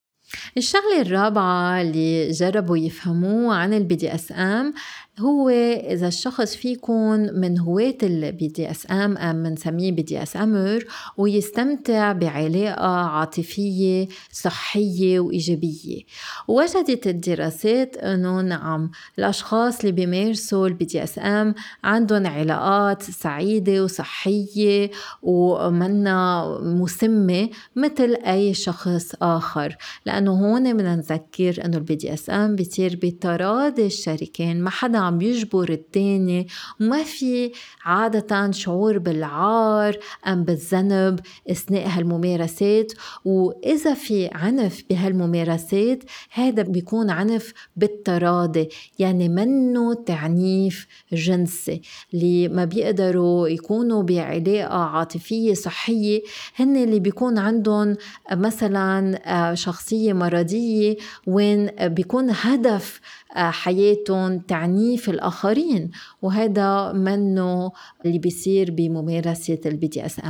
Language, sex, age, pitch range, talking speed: Arabic, female, 30-49, 175-215 Hz, 95 wpm